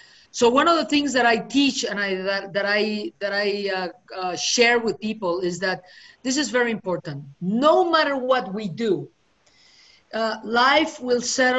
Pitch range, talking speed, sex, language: 195-245 Hz, 180 wpm, female, English